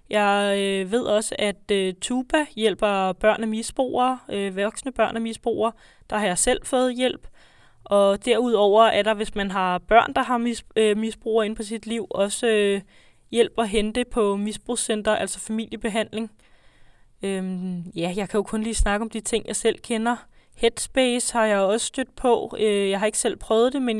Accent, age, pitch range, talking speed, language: native, 20-39, 205-230 Hz, 170 wpm, Danish